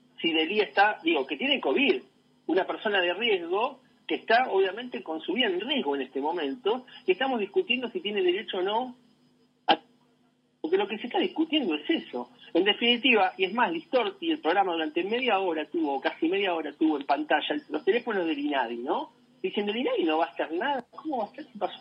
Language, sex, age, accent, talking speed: Spanish, male, 40-59, Argentinian, 210 wpm